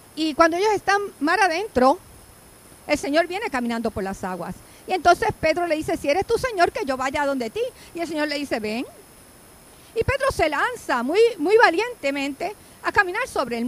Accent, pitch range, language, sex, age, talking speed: American, 245-350 Hz, English, female, 50-69, 195 wpm